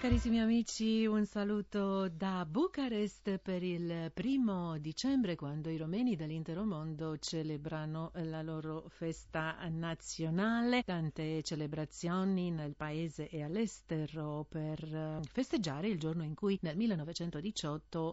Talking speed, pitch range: 115 wpm, 155-190 Hz